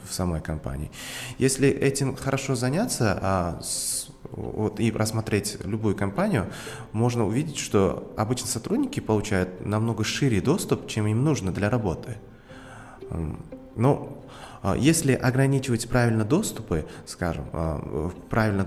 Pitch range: 95-130 Hz